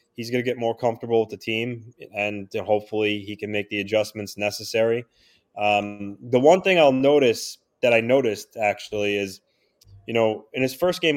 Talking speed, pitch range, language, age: 185 wpm, 100-120 Hz, English, 20-39